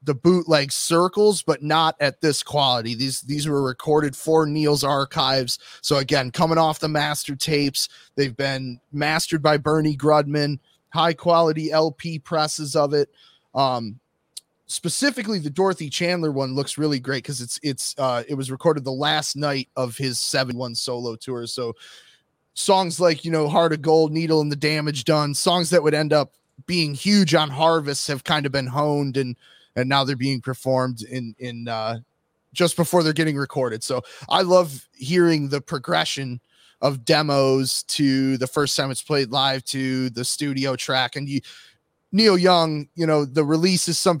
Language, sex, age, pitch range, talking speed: English, male, 20-39, 130-160 Hz, 170 wpm